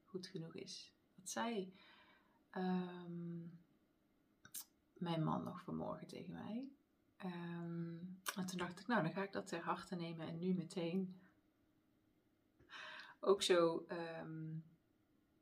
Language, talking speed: Dutch, 120 wpm